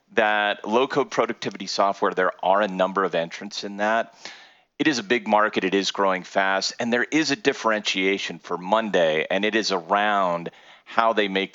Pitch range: 95-115 Hz